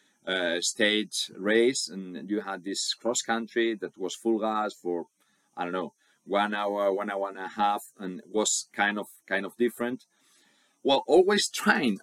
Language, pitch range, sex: English, 85-110 Hz, male